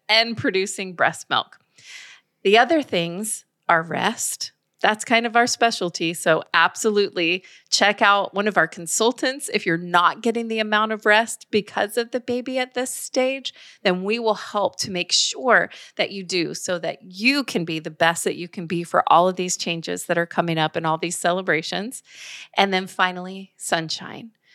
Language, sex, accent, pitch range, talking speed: English, female, American, 175-225 Hz, 185 wpm